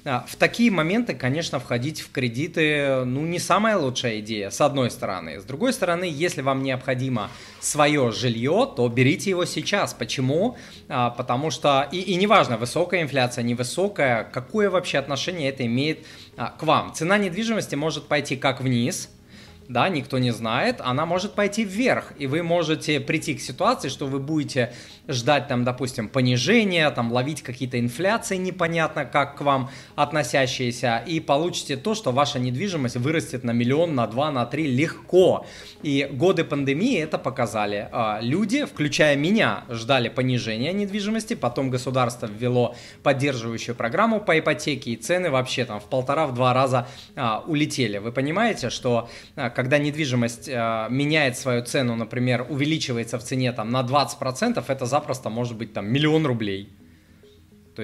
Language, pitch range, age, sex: Russian, 120-155 Hz, 20-39, male